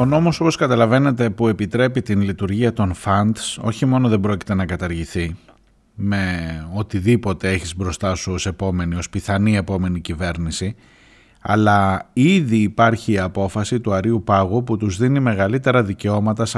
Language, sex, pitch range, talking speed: Greek, male, 100-125 Hz, 140 wpm